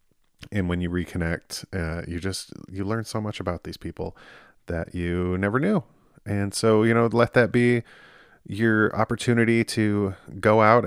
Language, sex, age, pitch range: English, male, 30-49, 90-110 Hz